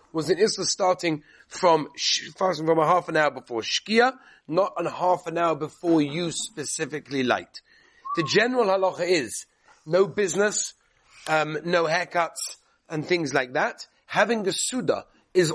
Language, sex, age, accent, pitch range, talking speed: English, male, 30-49, British, 145-185 Hz, 150 wpm